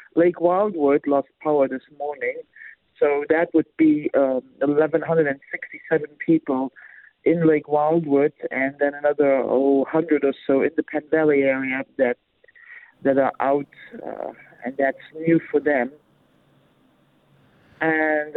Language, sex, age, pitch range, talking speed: English, male, 50-69, 135-160 Hz, 125 wpm